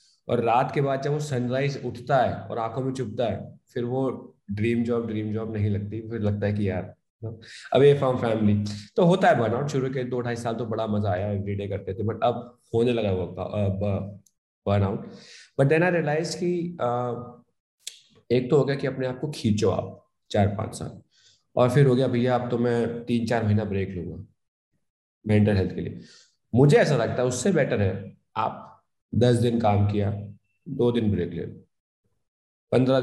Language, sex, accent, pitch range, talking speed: Hindi, male, native, 105-140 Hz, 170 wpm